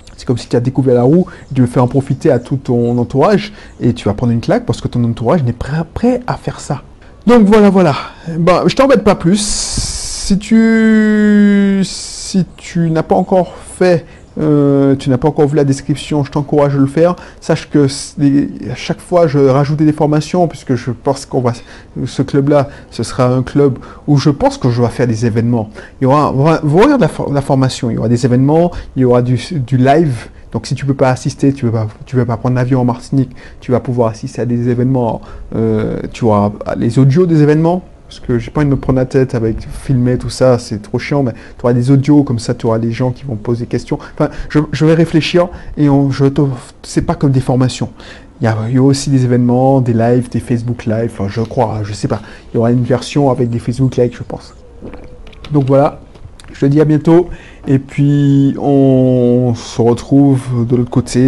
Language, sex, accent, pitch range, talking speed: French, male, French, 120-150 Hz, 225 wpm